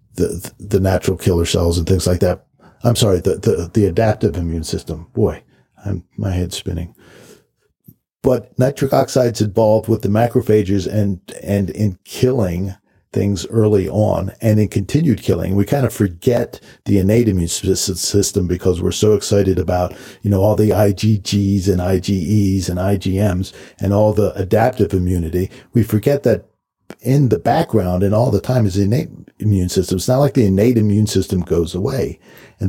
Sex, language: male, English